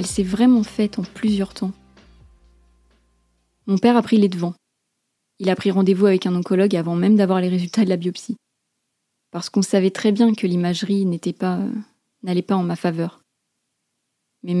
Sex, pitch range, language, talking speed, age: female, 180-210 Hz, French, 175 wpm, 20-39